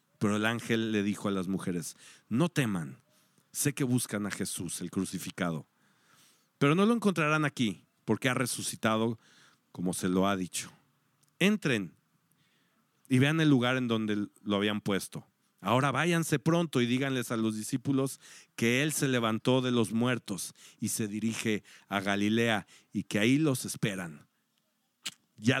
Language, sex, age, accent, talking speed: Spanish, male, 50-69, Mexican, 155 wpm